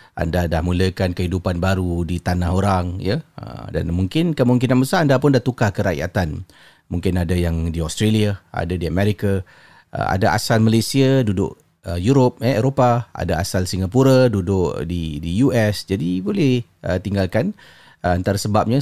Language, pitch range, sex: Malay, 95-130 Hz, male